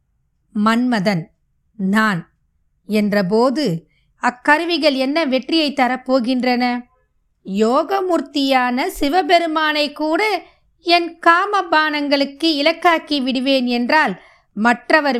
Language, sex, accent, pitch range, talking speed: Tamil, female, native, 225-295 Hz, 65 wpm